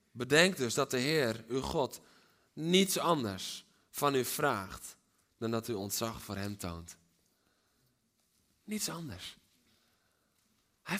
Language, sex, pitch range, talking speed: Dutch, male, 115-145 Hz, 120 wpm